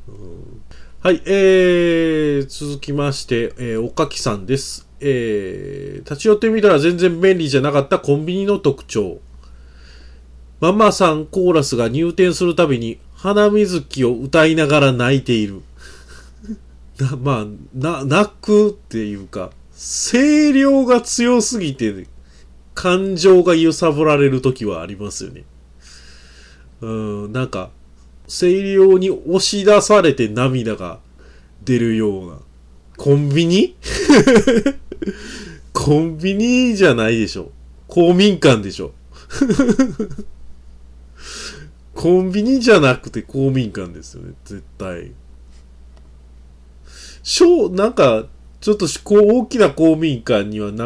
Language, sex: Japanese, male